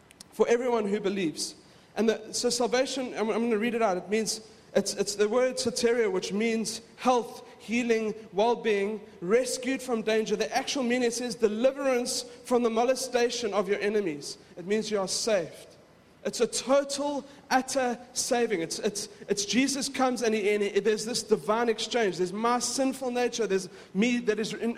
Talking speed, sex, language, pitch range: 180 wpm, male, English, 200-245 Hz